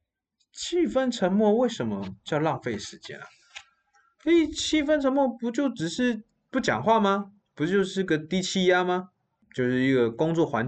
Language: Chinese